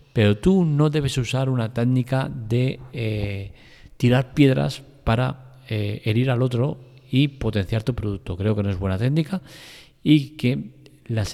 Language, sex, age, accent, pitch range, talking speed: Spanish, male, 40-59, Spanish, 110-140 Hz, 155 wpm